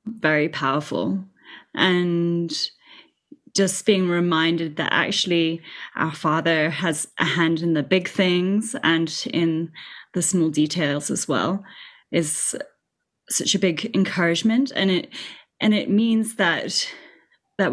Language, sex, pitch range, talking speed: English, female, 160-200 Hz, 120 wpm